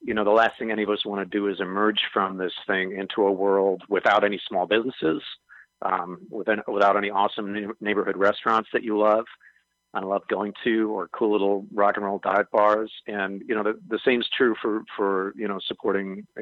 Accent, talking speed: American, 210 wpm